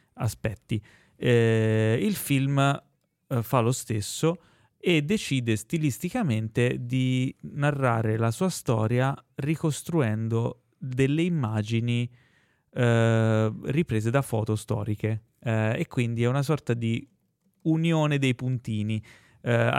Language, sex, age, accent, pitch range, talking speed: Italian, male, 30-49, native, 115-150 Hz, 105 wpm